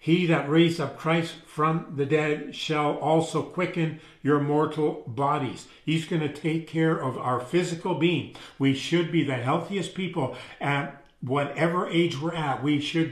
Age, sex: 50-69, male